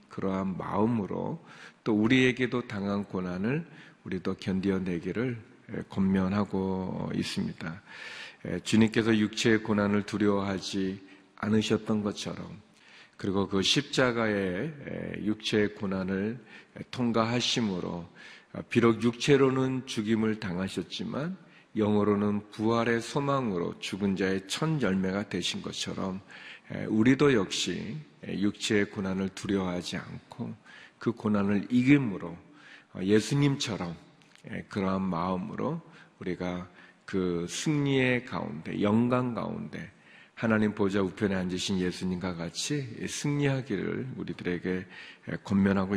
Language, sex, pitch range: Korean, male, 95-120 Hz